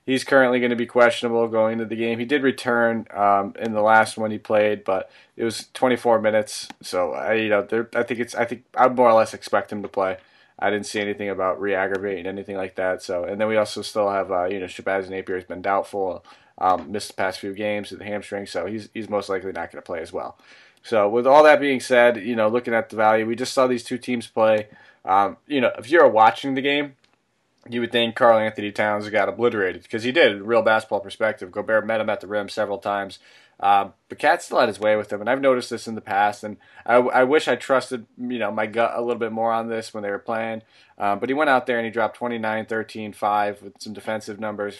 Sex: male